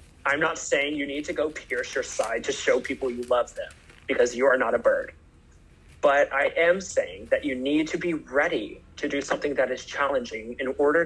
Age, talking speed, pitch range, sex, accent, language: 30-49, 215 wpm, 120-190 Hz, male, American, English